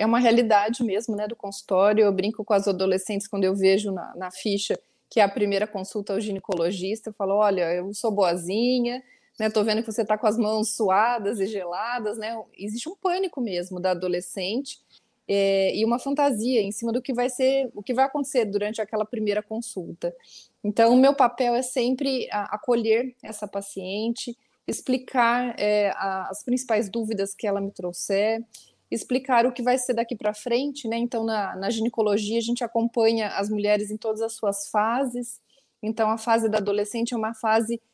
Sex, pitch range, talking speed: female, 205-245 Hz, 185 wpm